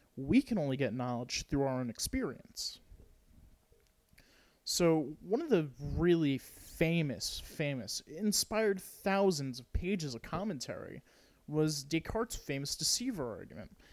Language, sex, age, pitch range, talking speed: English, male, 30-49, 130-170 Hz, 115 wpm